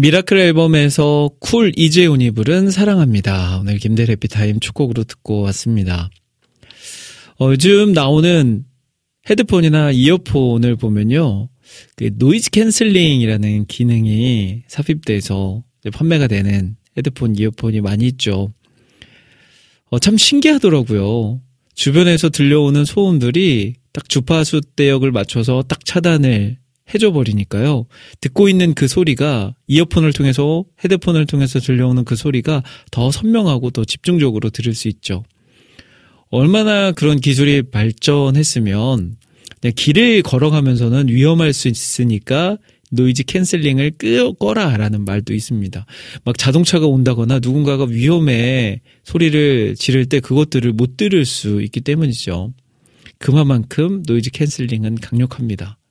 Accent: native